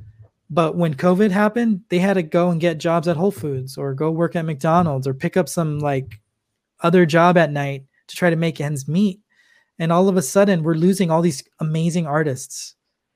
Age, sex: 20-39, male